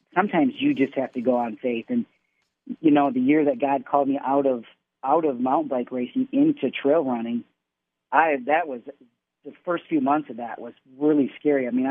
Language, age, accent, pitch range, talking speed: English, 40-59, American, 125-190 Hz, 205 wpm